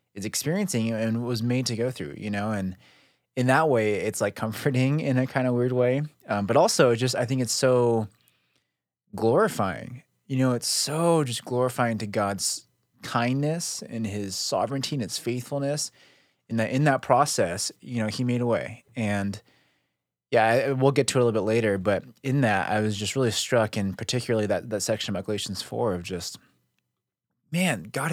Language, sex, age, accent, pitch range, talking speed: English, male, 20-39, American, 110-140 Hz, 190 wpm